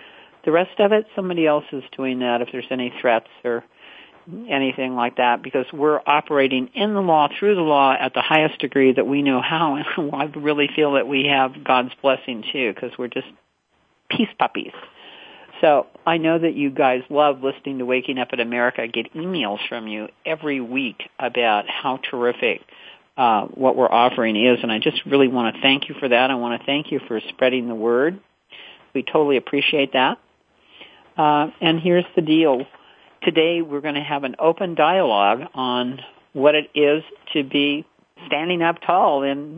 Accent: American